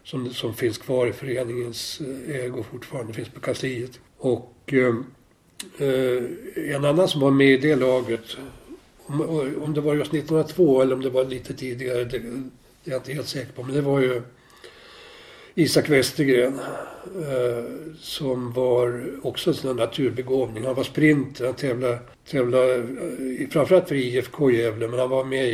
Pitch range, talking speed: 125-140 Hz, 155 wpm